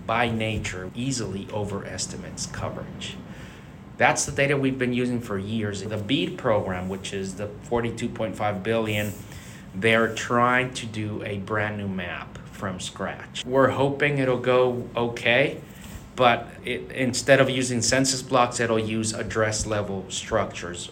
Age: 30-49